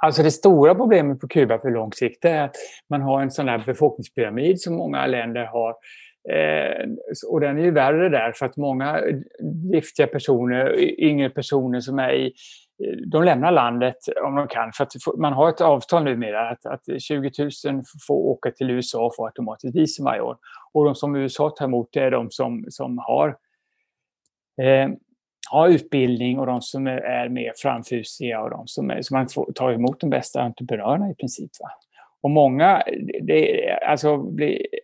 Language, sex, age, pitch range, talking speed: Swedish, male, 30-49, 130-160 Hz, 180 wpm